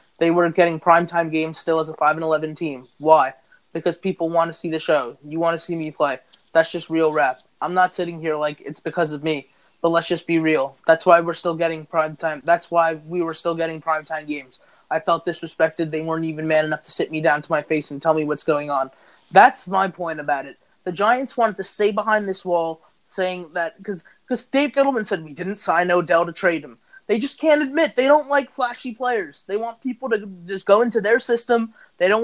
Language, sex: English, male